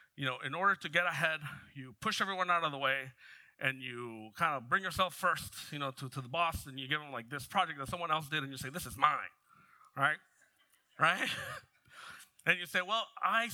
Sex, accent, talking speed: male, American, 225 wpm